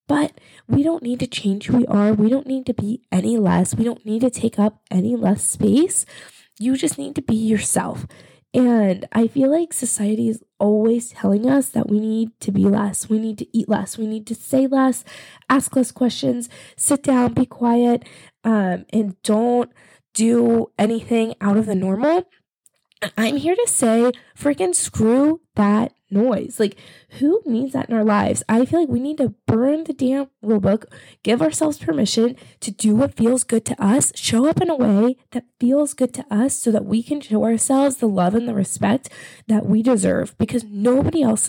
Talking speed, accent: 195 wpm, American